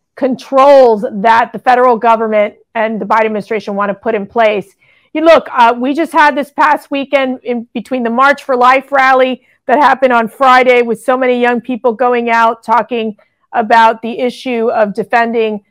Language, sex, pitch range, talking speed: English, female, 225-260 Hz, 180 wpm